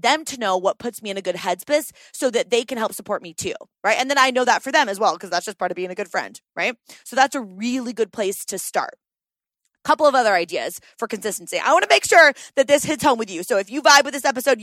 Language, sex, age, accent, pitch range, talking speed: English, female, 20-39, American, 200-280 Hz, 290 wpm